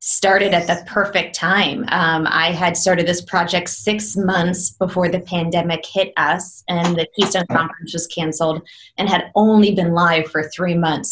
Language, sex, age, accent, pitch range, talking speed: English, female, 20-39, American, 165-190 Hz, 175 wpm